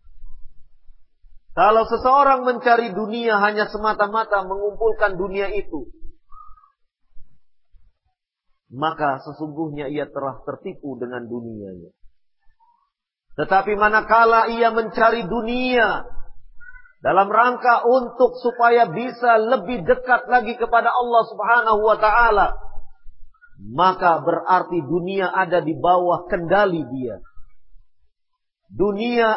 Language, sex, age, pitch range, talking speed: Indonesian, male, 40-59, 165-245 Hz, 90 wpm